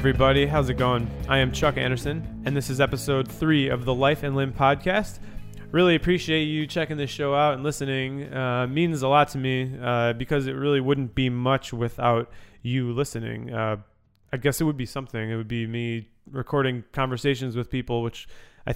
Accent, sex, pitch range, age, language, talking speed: American, male, 120-140 Hz, 20-39, English, 195 wpm